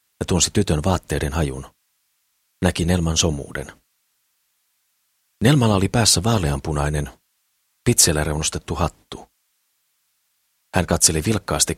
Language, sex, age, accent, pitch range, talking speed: Finnish, male, 40-59, native, 75-95 Hz, 90 wpm